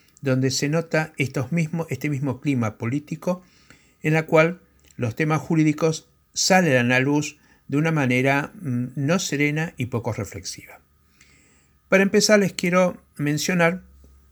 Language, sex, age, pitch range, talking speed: Spanish, male, 60-79, 120-160 Hz, 125 wpm